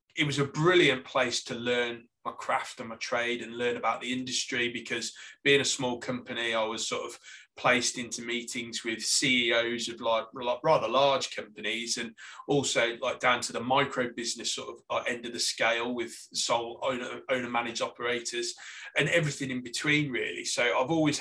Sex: male